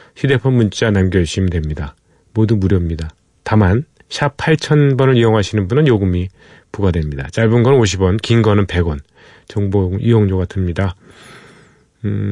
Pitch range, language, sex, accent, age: 95-120 Hz, Korean, male, native, 40-59